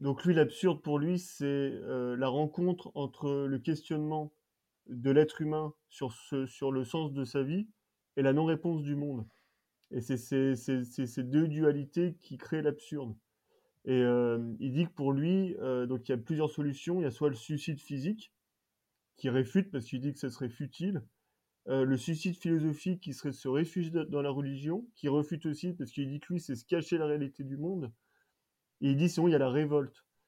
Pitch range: 135-165 Hz